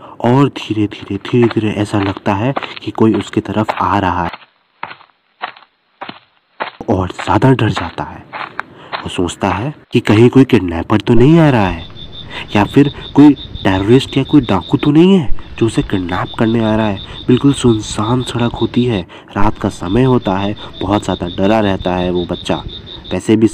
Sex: male